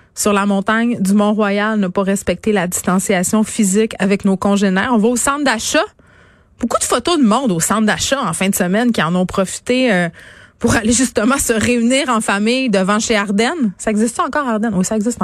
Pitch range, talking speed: 195-235 Hz, 210 wpm